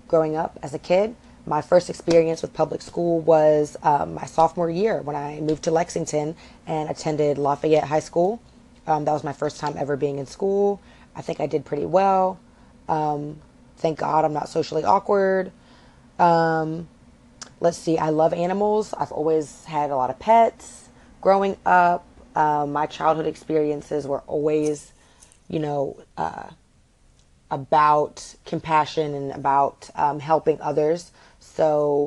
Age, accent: 20-39, American